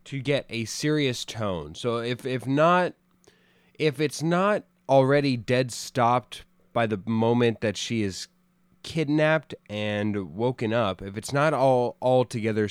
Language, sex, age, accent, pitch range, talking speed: English, male, 20-39, American, 100-140 Hz, 140 wpm